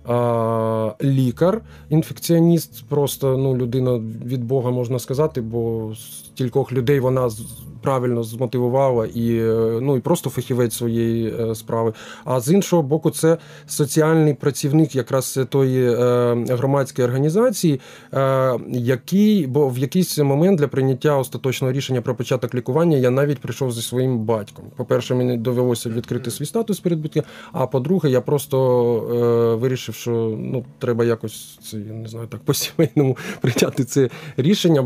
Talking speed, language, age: 140 wpm, Ukrainian, 20-39